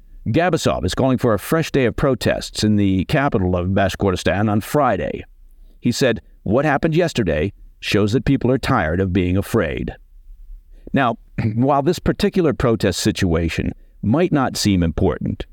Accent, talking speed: American, 150 wpm